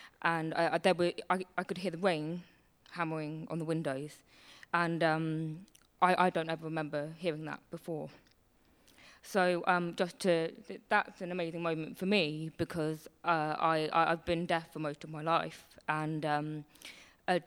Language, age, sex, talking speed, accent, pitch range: English, 20-39, female, 170 wpm, British, 155-175 Hz